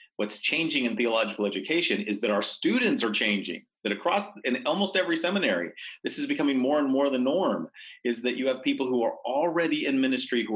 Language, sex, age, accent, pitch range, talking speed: English, male, 40-59, American, 105-160 Hz, 205 wpm